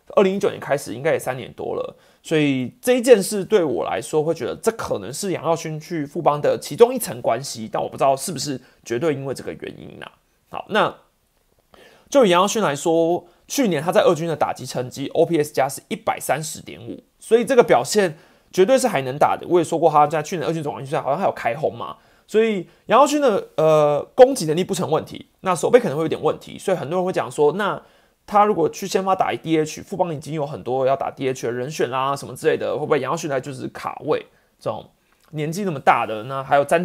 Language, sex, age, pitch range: Chinese, male, 30-49, 150-200 Hz